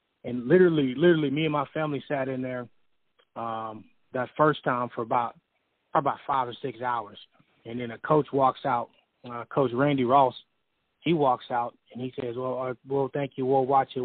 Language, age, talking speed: English, 20-39, 190 wpm